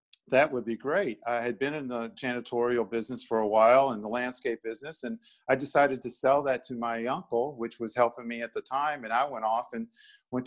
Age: 50-69